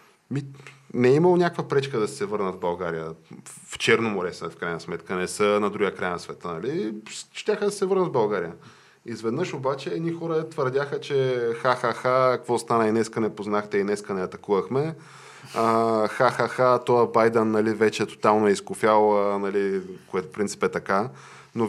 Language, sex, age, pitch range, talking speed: Bulgarian, male, 20-39, 115-165 Hz, 170 wpm